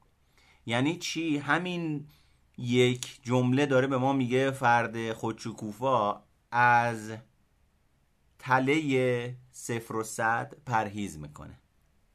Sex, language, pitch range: male, Persian, 105-135 Hz